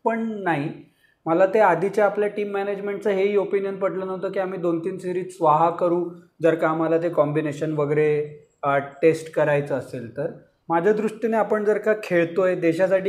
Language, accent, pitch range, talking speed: Marathi, native, 170-215 Hz, 145 wpm